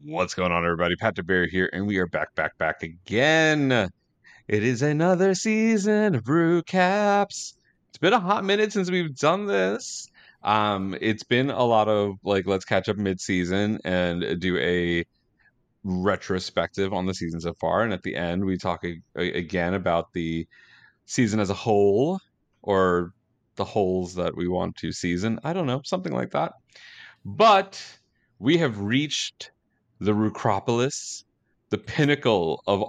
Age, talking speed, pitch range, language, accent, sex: 30-49, 155 wpm, 90-135 Hz, English, American, male